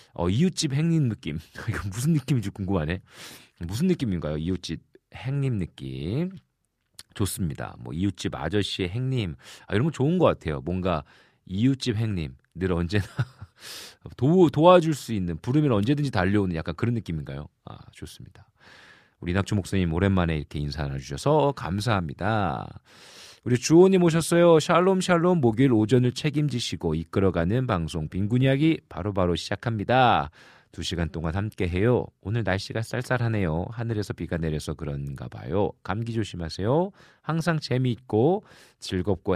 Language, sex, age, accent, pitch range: Korean, male, 40-59, native, 90-145 Hz